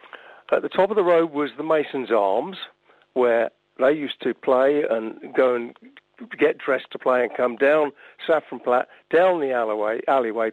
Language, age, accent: English, 50-69, British